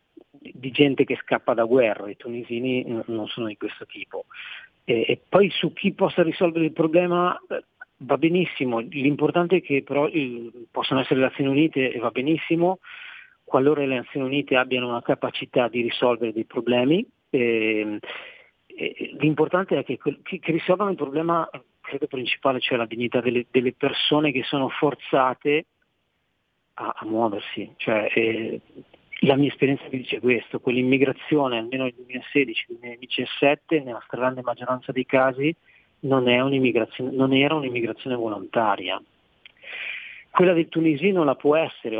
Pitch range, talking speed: 125-160 Hz, 150 wpm